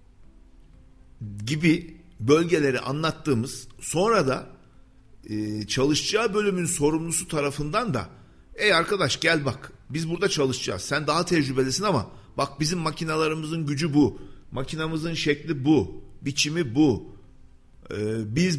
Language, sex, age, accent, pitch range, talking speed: Turkish, male, 50-69, native, 125-170 Hz, 105 wpm